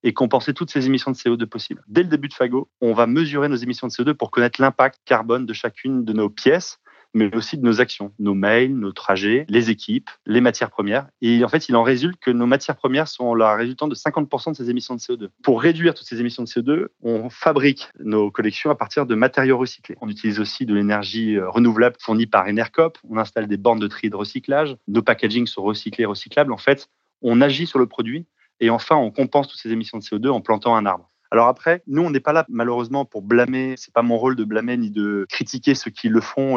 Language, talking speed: French, 240 wpm